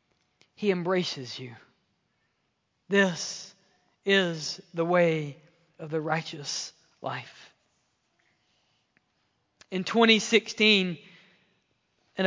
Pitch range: 180-225 Hz